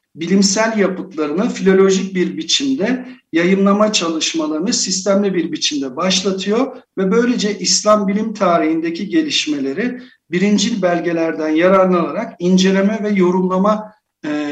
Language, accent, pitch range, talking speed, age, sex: Turkish, native, 160-205 Hz, 100 wpm, 50-69, male